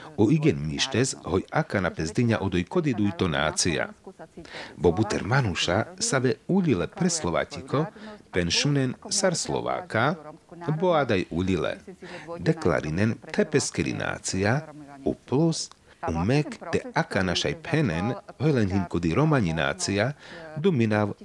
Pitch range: 95-160 Hz